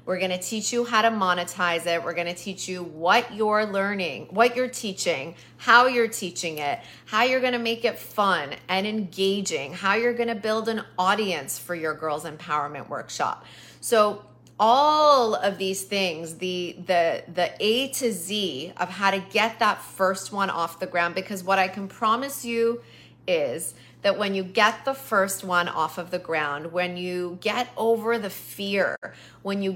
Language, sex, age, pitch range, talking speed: English, female, 30-49, 180-220 Hz, 185 wpm